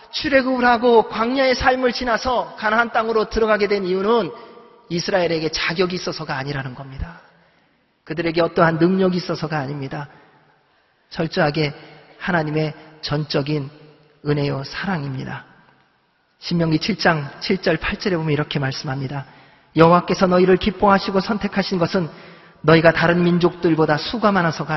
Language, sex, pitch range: Korean, male, 150-185 Hz